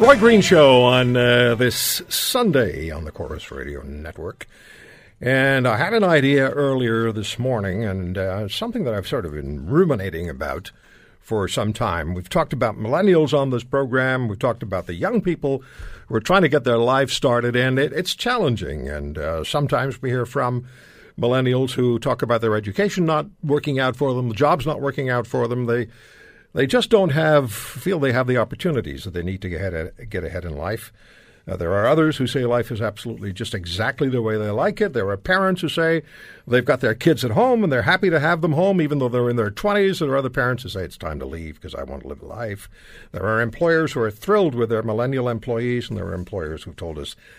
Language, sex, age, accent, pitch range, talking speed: English, male, 60-79, American, 105-145 Hz, 230 wpm